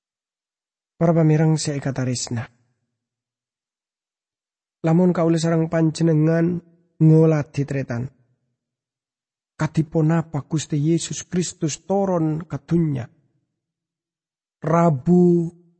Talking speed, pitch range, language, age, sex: 65 wpm, 145-210 Hz, English, 40-59, male